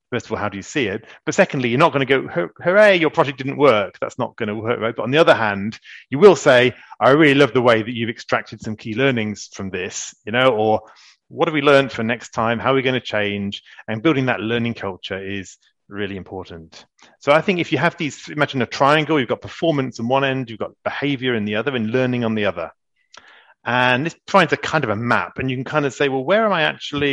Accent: British